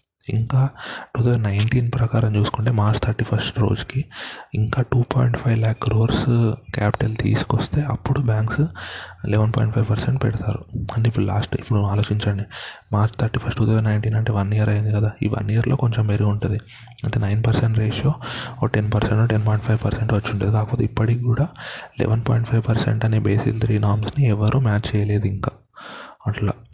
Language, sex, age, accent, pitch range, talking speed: Telugu, male, 20-39, native, 105-120 Hz, 160 wpm